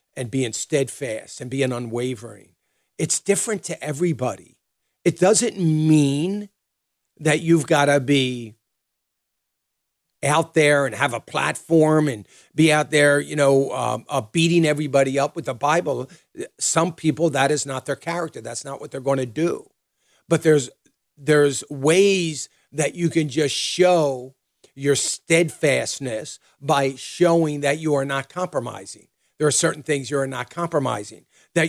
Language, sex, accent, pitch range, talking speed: English, male, American, 130-155 Hz, 150 wpm